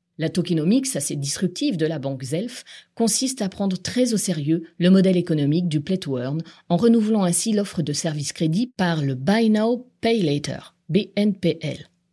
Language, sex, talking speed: French, female, 165 wpm